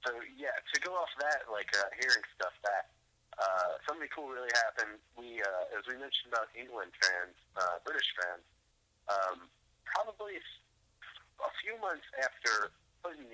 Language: English